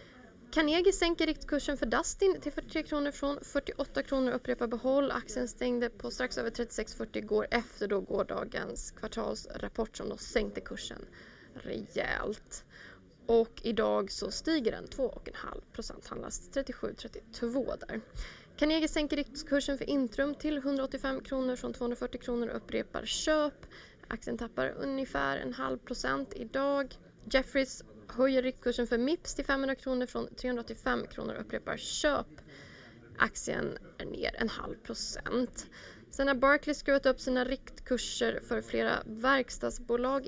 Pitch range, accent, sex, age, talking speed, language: 245-290 Hz, native, female, 20-39, 135 wpm, Swedish